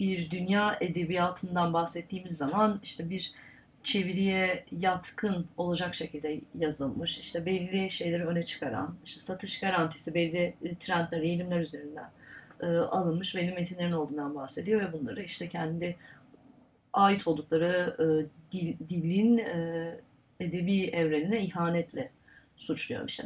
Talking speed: 115 wpm